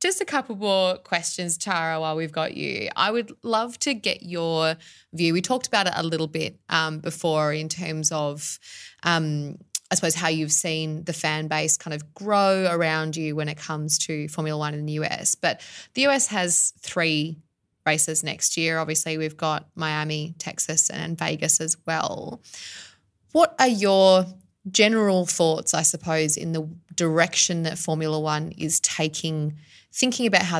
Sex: female